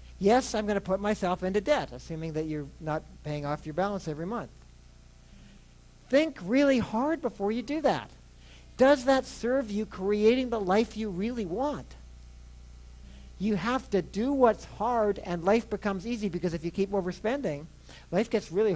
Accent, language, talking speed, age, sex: American, English, 165 wpm, 60-79, male